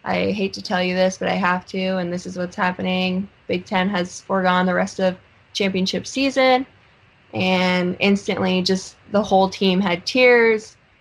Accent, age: American, 20-39